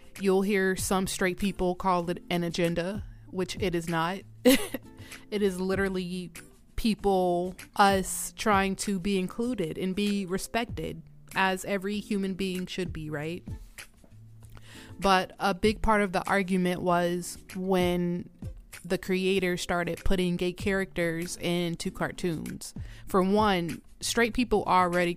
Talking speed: 130 wpm